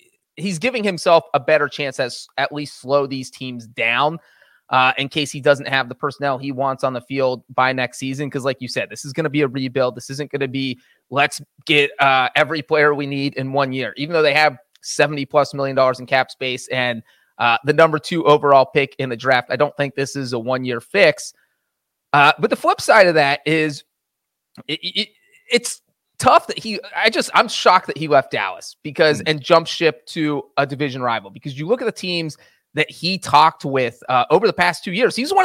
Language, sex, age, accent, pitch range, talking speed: English, male, 30-49, American, 140-190 Hz, 225 wpm